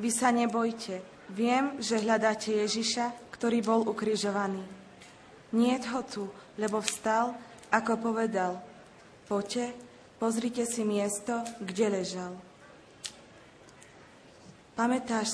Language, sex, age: Slovak, female, 20-39